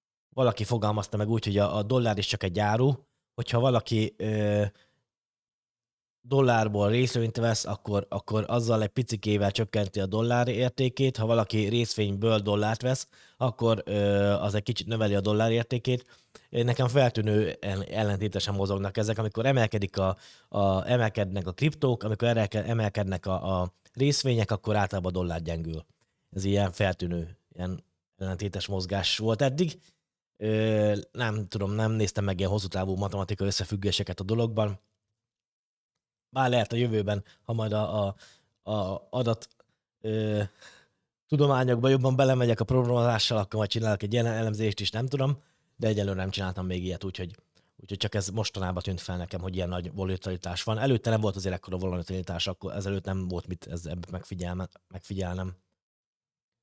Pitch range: 95-115 Hz